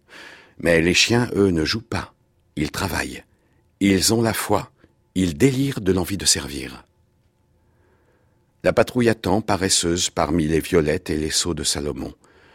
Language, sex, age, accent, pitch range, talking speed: French, male, 60-79, French, 85-110 Hz, 150 wpm